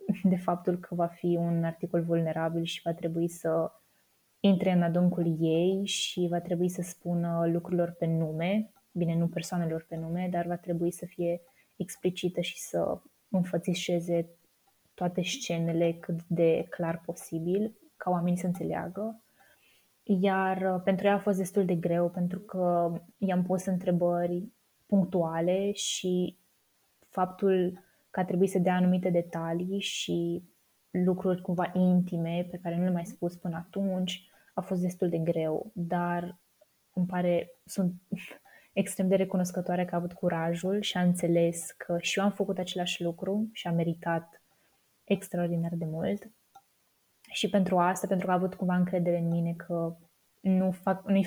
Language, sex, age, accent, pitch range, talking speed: Romanian, female, 20-39, native, 170-190 Hz, 150 wpm